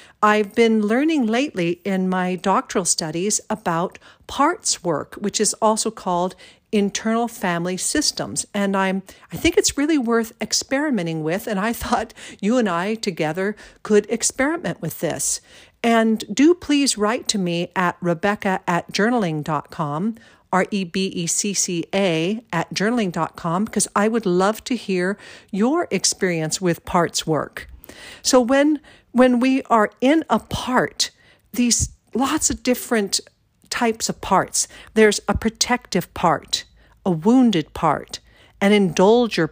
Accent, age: American, 50-69